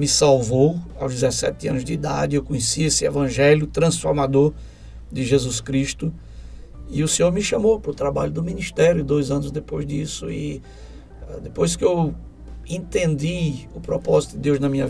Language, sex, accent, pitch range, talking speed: Portuguese, male, Brazilian, 130-155 Hz, 160 wpm